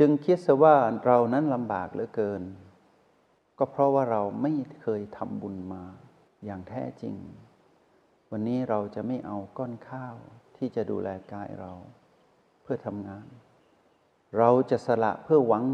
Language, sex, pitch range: Thai, male, 105-135 Hz